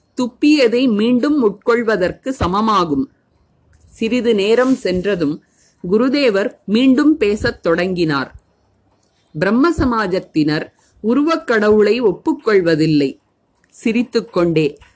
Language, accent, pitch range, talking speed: Tamil, native, 175-245 Hz, 60 wpm